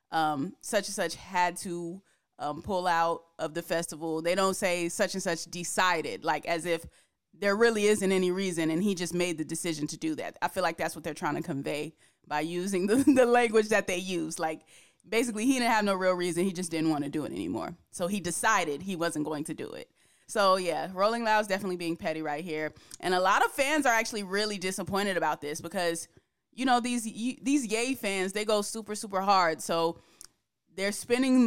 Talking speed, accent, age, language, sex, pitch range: 215 wpm, American, 20-39, English, female, 170-205 Hz